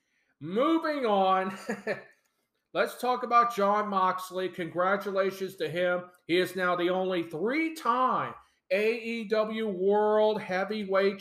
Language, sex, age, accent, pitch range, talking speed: English, male, 40-59, American, 170-200 Hz, 100 wpm